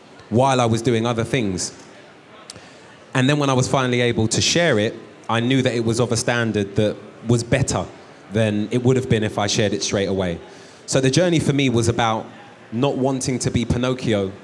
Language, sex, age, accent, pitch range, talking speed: English, male, 20-39, British, 110-135 Hz, 210 wpm